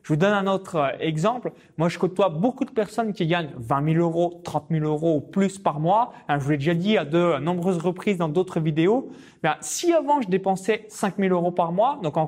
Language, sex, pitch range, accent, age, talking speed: French, male, 150-195 Hz, French, 20-39, 235 wpm